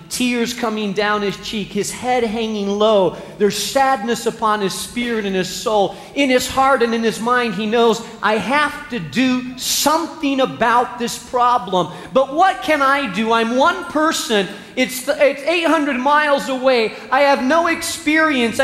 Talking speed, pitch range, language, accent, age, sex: 165 wpm, 180-255 Hz, English, American, 40-59, male